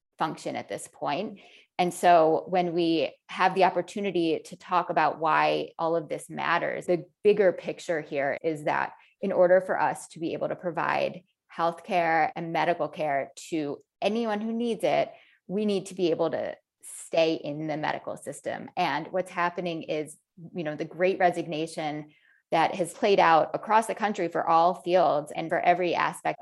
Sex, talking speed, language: female, 175 wpm, English